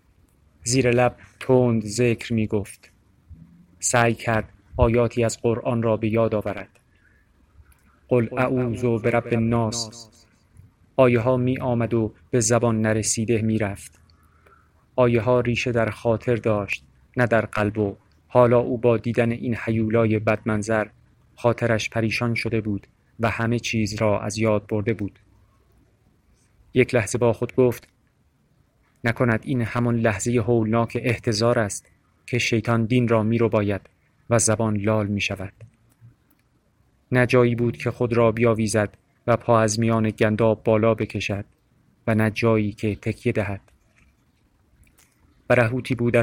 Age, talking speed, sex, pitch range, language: 30-49, 130 wpm, male, 105-120 Hz, Persian